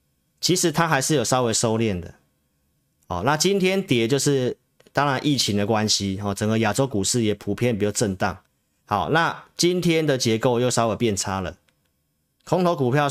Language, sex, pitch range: Chinese, male, 100-135 Hz